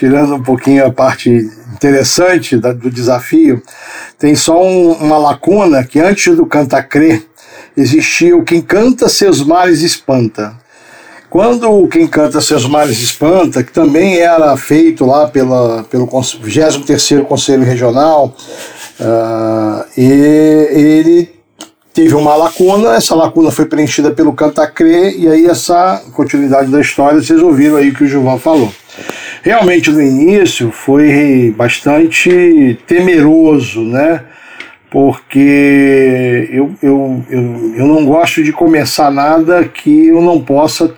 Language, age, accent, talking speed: Portuguese, 60-79, Brazilian, 130 wpm